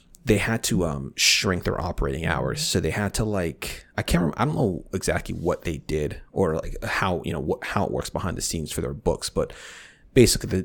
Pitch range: 75-100 Hz